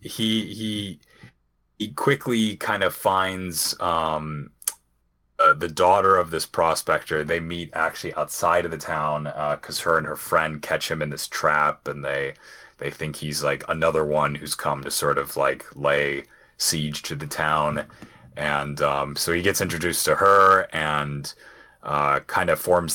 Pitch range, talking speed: 75-85 Hz, 165 wpm